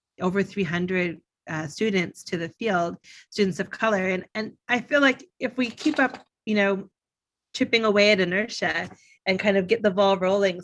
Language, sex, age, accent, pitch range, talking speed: English, female, 30-49, American, 175-205 Hz, 180 wpm